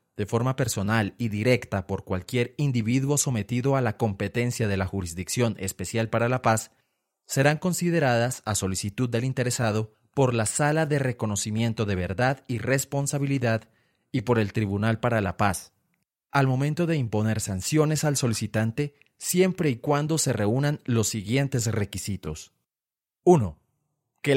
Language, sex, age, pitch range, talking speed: Spanish, male, 30-49, 110-135 Hz, 145 wpm